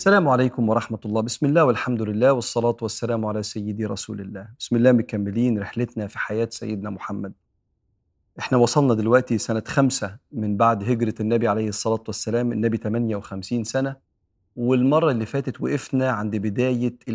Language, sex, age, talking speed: Arabic, male, 40-59, 150 wpm